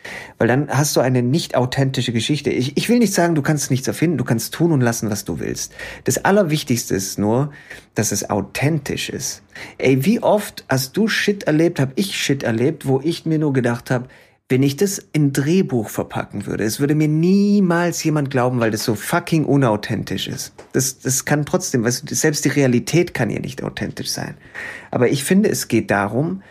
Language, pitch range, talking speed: German, 110-150 Hz, 200 wpm